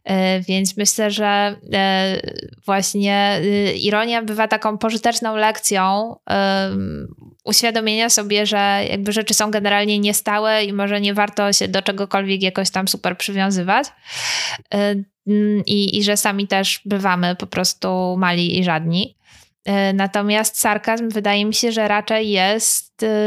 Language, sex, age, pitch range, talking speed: Polish, female, 10-29, 190-215 Hz, 120 wpm